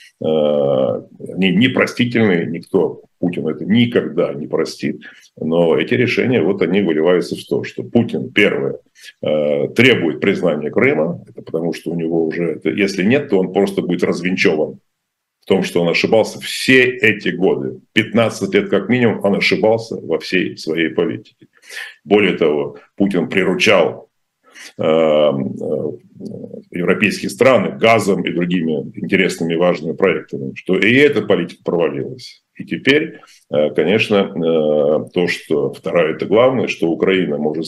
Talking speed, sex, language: 130 wpm, male, Russian